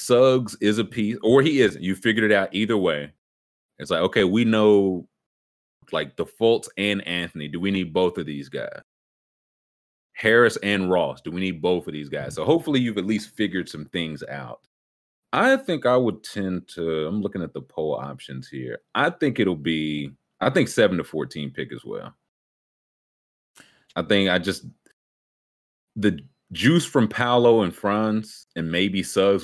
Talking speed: 175 wpm